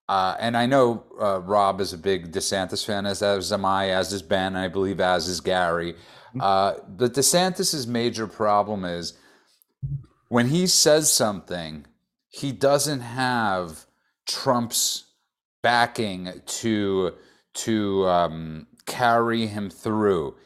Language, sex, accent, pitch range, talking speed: English, male, American, 95-120 Hz, 130 wpm